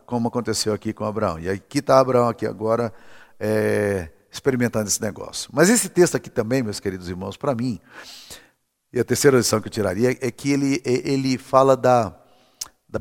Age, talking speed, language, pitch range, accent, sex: 50-69, 175 wpm, Portuguese, 115-155 Hz, Brazilian, male